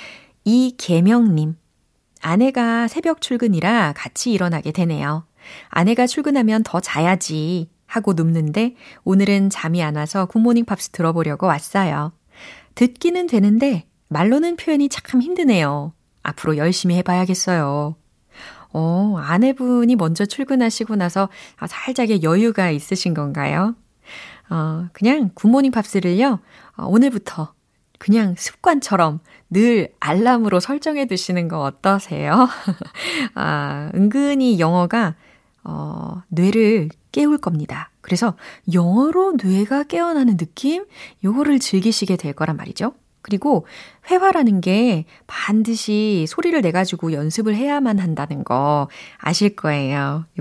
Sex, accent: female, native